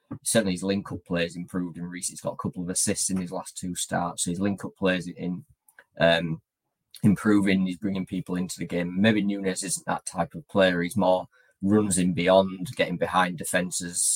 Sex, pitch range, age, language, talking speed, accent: male, 85-100 Hz, 20-39, English, 195 wpm, British